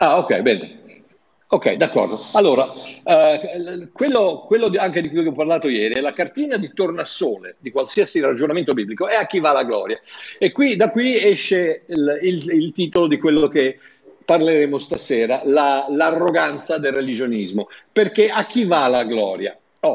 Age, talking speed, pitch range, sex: 50-69, 155 wpm, 160-245 Hz, male